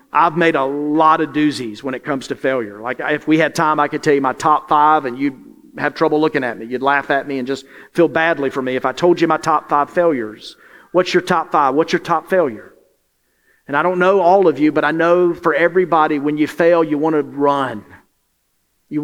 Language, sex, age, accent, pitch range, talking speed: English, male, 40-59, American, 130-160 Hz, 240 wpm